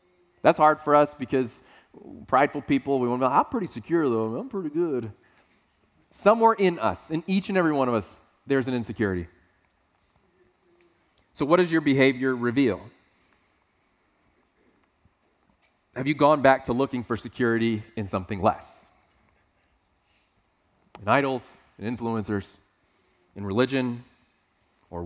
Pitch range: 105-145 Hz